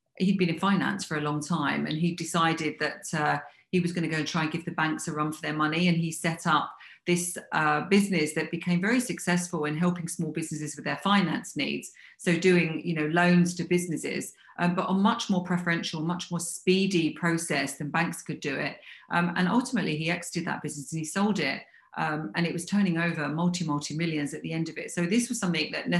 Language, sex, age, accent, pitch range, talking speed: English, female, 40-59, British, 160-180 Hz, 230 wpm